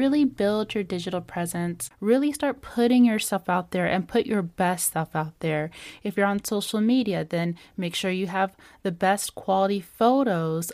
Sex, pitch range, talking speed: female, 175-235 Hz, 180 wpm